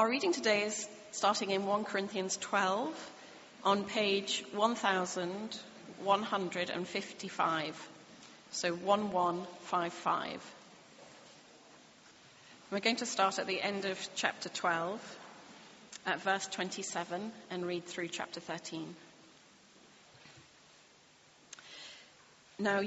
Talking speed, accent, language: 85 wpm, British, English